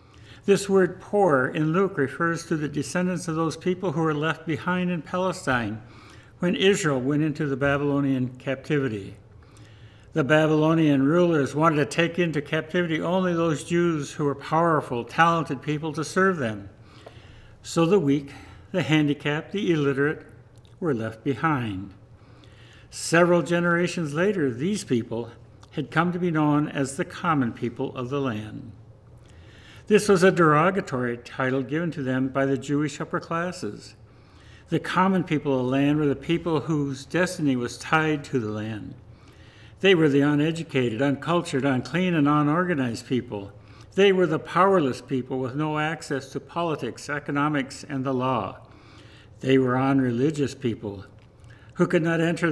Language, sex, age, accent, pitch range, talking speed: English, male, 60-79, American, 120-165 Hz, 150 wpm